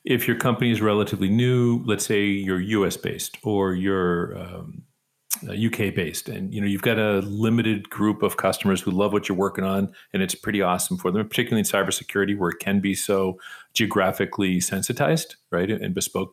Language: English